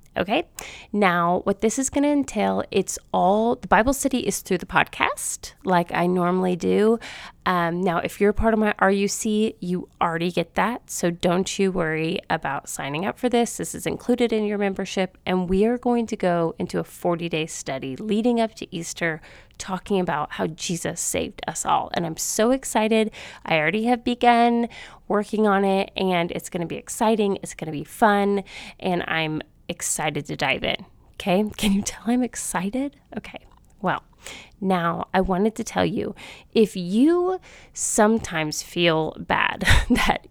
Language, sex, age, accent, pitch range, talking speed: English, female, 30-49, American, 180-235 Hz, 175 wpm